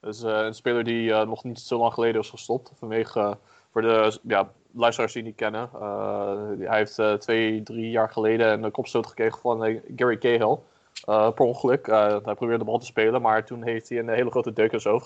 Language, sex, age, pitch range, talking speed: Dutch, male, 20-39, 110-125 Hz, 230 wpm